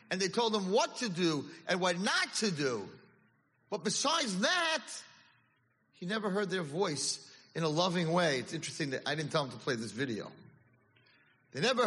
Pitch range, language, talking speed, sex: 130-195 Hz, English, 185 wpm, male